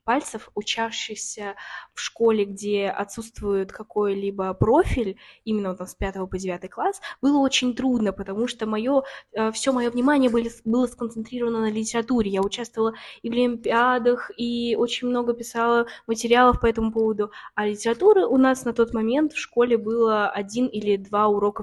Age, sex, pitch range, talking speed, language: 10-29, female, 210-250 Hz, 155 wpm, Russian